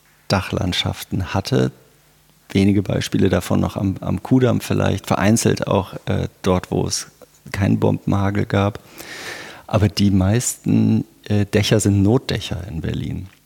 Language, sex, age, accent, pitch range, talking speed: German, male, 50-69, German, 95-110 Hz, 125 wpm